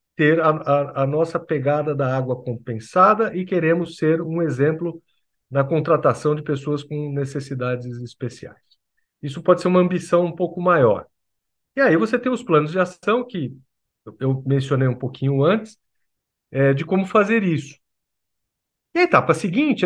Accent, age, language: Brazilian, 50-69, Portuguese